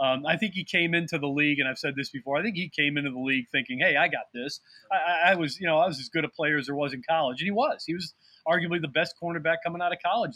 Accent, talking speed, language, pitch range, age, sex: American, 315 wpm, English, 135-165 Hz, 30-49, male